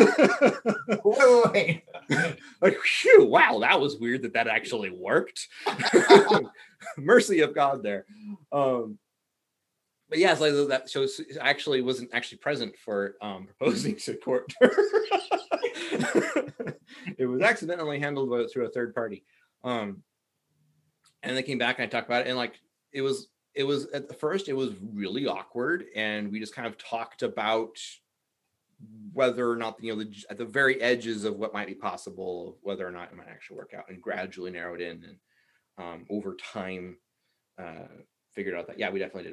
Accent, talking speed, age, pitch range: American, 160 wpm, 30-49, 110-150 Hz